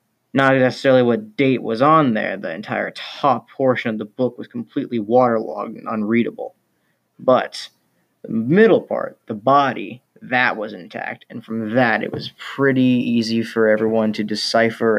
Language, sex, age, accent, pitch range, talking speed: English, male, 20-39, American, 110-140 Hz, 155 wpm